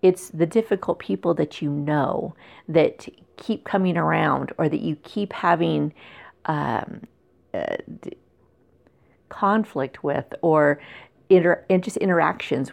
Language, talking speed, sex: English, 125 wpm, female